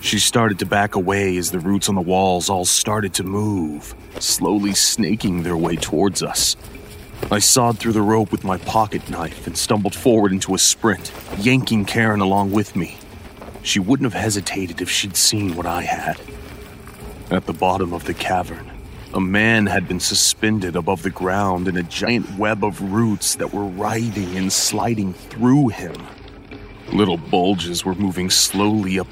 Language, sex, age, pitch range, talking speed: English, male, 30-49, 90-105 Hz, 175 wpm